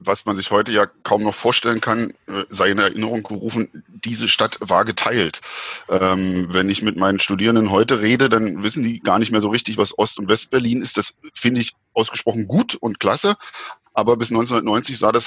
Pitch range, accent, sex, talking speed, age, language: 105-120 Hz, German, male, 195 wpm, 10-29, German